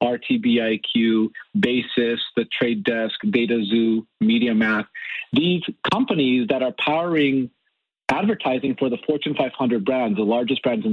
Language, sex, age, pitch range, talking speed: English, male, 40-59, 125-170 Hz, 120 wpm